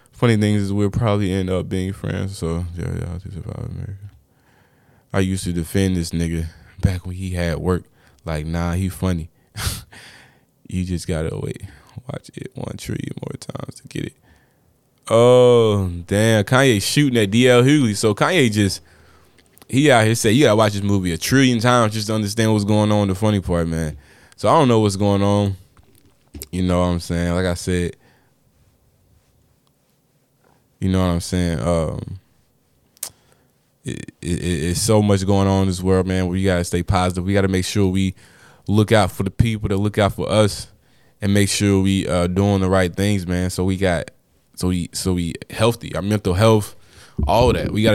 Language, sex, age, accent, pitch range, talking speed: English, male, 20-39, American, 90-110 Hz, 195 wpm